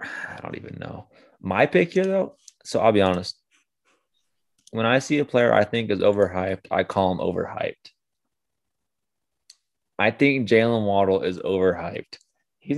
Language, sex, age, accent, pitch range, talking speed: English, male, 20-39, American, 95-115 Hz, 150 wpm